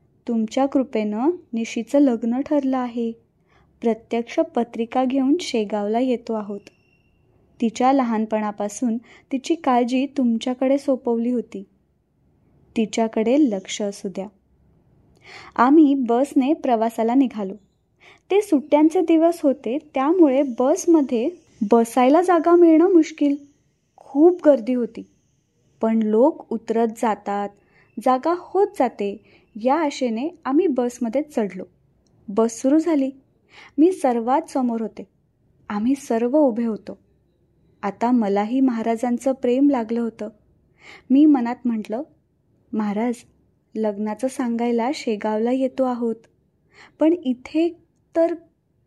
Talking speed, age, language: 100 wpm, 20-39, Marathi